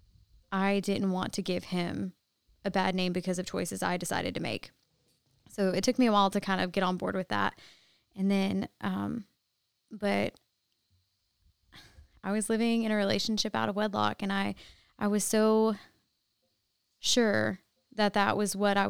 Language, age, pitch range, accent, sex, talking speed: English, 20-39, 185-210 Hz, American, female, 170 wpm